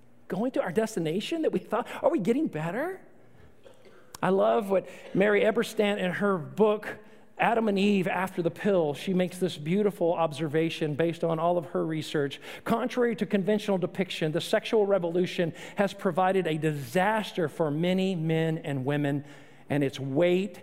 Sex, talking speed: male, 160 wpm